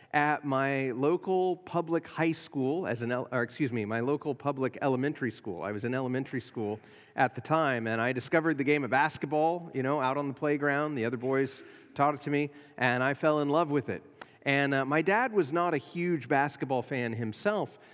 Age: 40-59